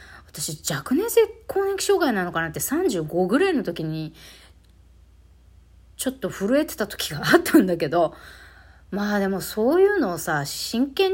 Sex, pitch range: female, 145-230 Hz